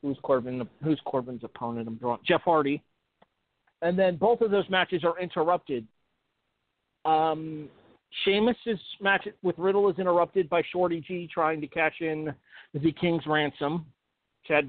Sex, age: male, 40-59